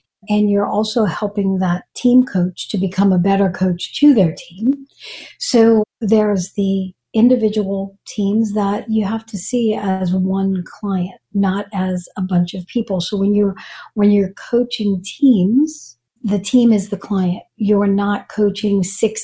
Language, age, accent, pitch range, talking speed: English, 50-69, American, 190-225 Hz, 155 wpm